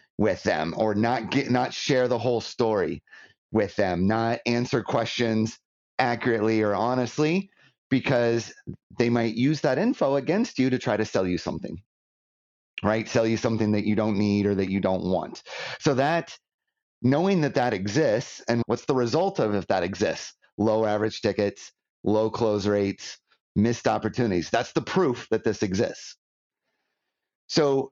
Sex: male